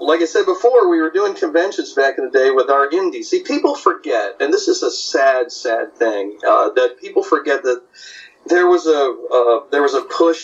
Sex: male